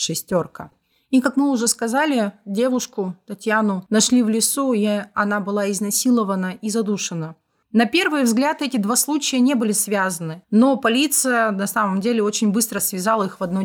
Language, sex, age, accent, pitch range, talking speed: Russian, female, 30-49, native, 200-250 Hz, 165 wpm